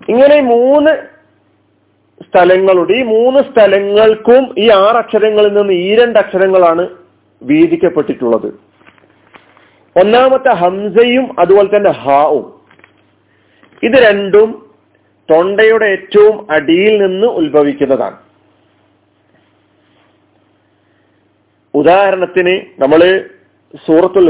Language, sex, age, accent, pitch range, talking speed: Malayalam, male, 40-59, native, 130-210 Hz, 70 wpm